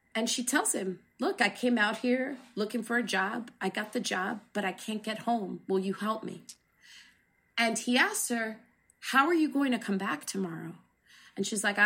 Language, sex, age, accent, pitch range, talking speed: English, female, 30-49, American, 200-250 Hz, 205 wpm